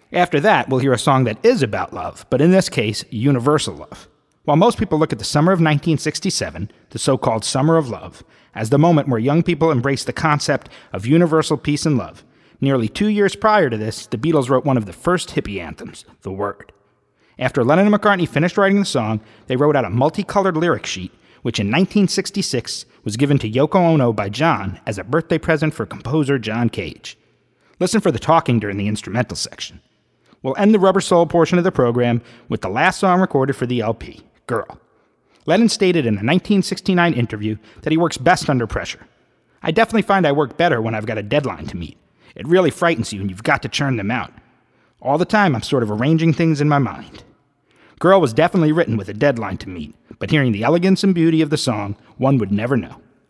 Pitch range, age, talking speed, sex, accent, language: 120-170 Hz, 30-49, 215 wpm, male, American, English